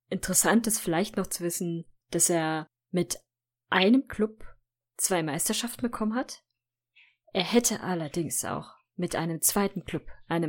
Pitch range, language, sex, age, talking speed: 160-195 Hz, German, female, 20-39, 135 wpm